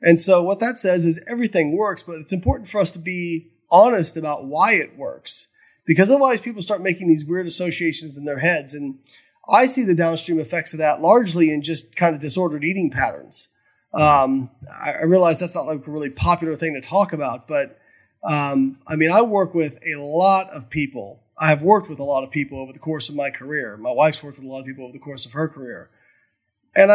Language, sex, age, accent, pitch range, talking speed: English, male, 30-49, American, 150-185 Hz, 225 wpm